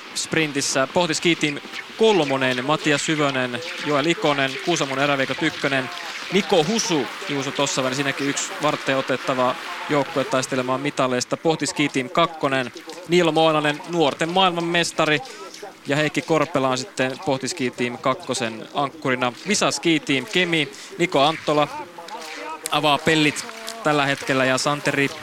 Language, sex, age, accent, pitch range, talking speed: Finnish, male, 20-39, native, 135-160 Hz, 105 wpm